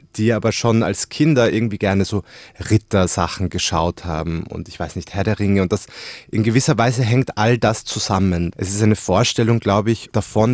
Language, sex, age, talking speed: German, male, 20-39, 195 wpm